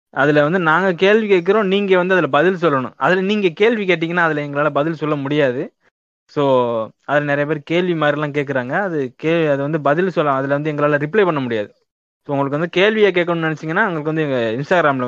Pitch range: 130-155 Hz